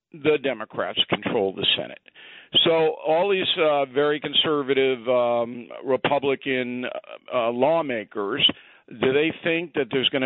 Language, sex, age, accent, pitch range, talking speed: English, male, 50-69, American, 130-165 Hz, 125 wpm